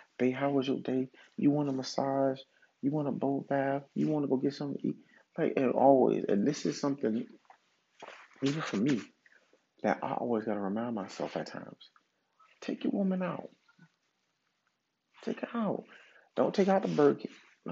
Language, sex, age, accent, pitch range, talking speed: English, male, 40-59, American, 140-220 Hz, 180 wpm